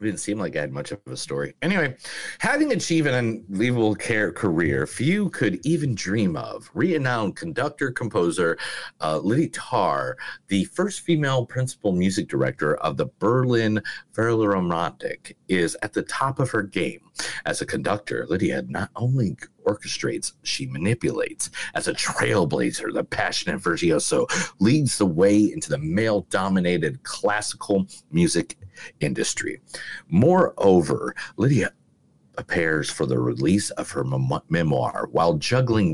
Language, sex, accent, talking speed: English, male, American, 135 wpm